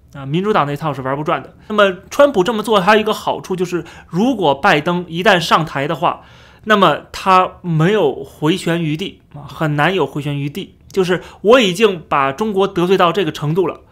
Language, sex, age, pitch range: Chinese, male, 30-49, 145-200 Hz